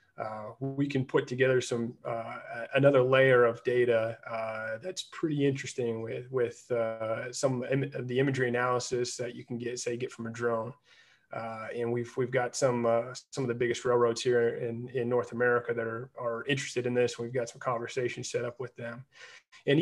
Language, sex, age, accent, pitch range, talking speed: English, male, 30-49, American, 115-130 Hz, 195 wpm